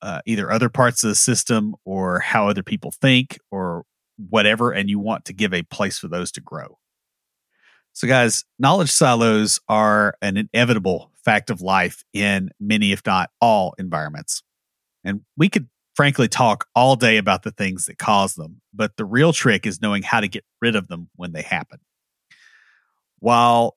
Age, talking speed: 40-59, 175 wpm